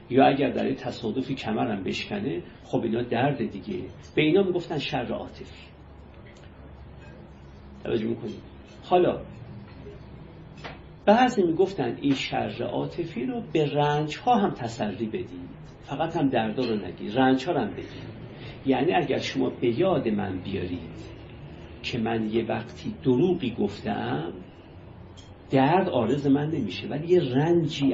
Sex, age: male, 50-69